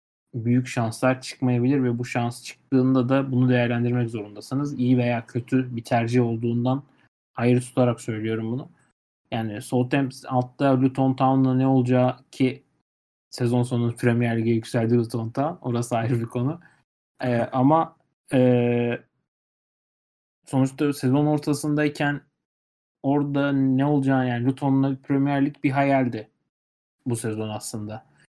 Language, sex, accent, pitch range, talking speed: Turkish, male, native, 120-140 Hz, 125 wpm